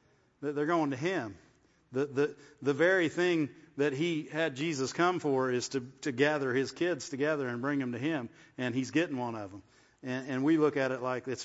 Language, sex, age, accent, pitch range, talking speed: English, male, 40-59, American, 125-145 Hz, 215 wpm